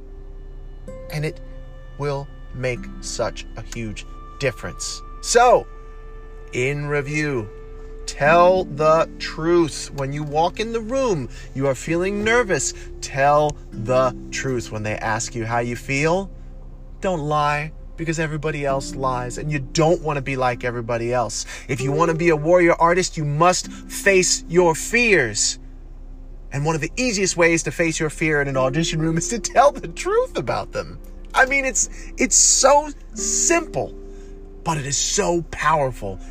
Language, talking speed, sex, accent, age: English, 150 wpm, male, American, 30-49